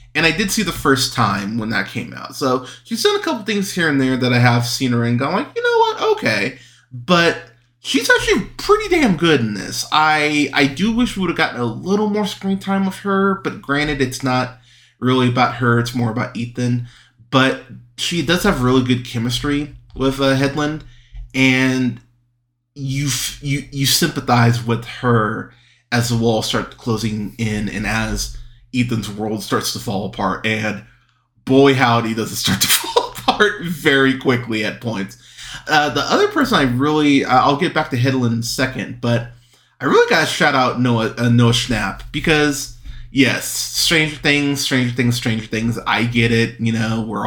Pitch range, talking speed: 120-145 Hz, 190 wpm